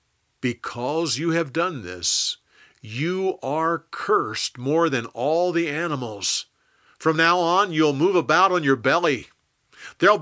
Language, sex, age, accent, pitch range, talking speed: English, male, 50-69, American, 110-155 Hz, 135 wpm